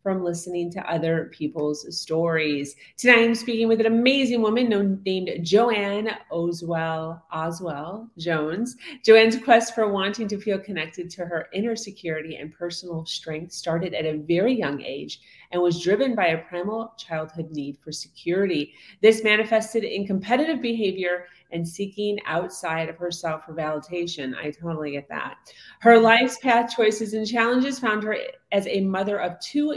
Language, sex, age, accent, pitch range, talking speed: English, female, 30-49, American, 165-215 Hz, 155 wpm